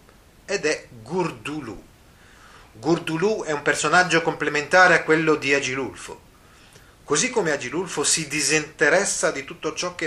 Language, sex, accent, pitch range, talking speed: Italian, male, native, 110-165 Hz, 125 wpm